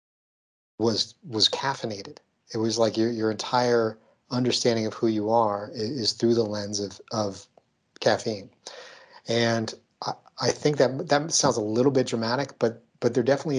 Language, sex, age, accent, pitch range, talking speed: English, male, 40-59, American, 110-125 Hz, 165 wpm